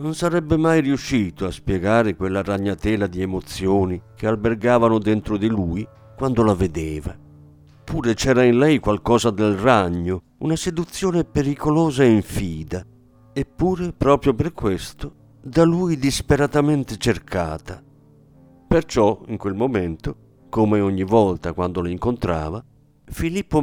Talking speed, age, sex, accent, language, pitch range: 125 wpm, 50-69, male, native, Italian, 95-135 Hz